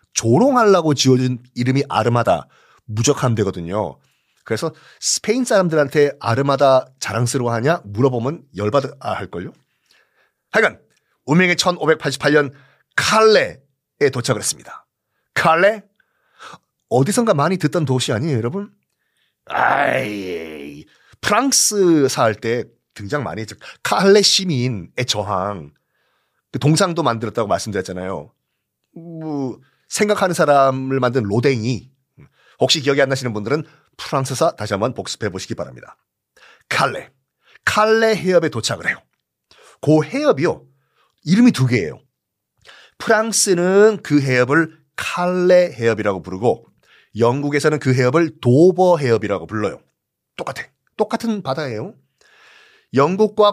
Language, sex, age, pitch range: Korean, male, 40-59, 125-185 Hz